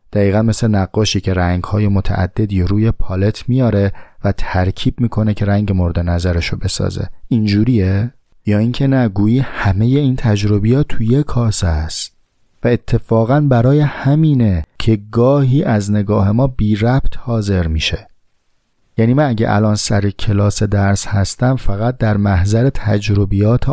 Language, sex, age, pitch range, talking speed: Persian, male, 30-49, 100-120 Hz, 135 wpm